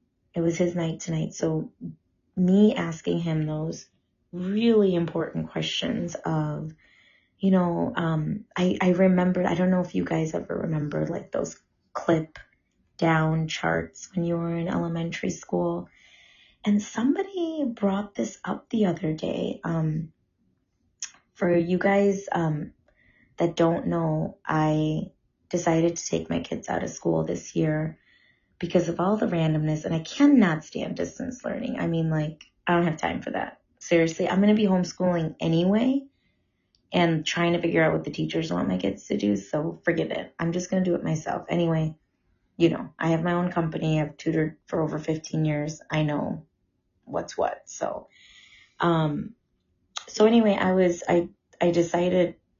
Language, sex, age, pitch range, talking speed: English, female, 20-39, 155-180 Hz, 165 wpm